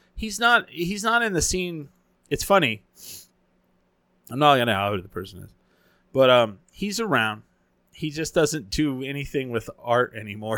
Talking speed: 165 wpm